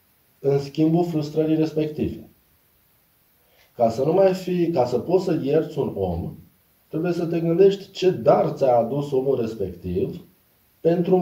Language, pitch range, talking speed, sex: Romanian, 105-155 Hz, 150 wpm, male